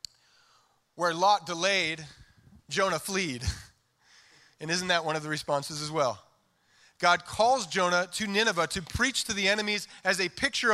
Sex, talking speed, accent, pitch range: male, 150 wpm, American, 185-230 Hz